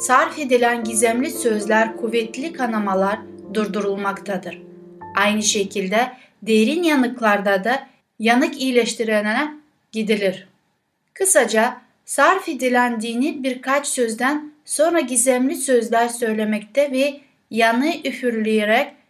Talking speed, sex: 85 wpm, female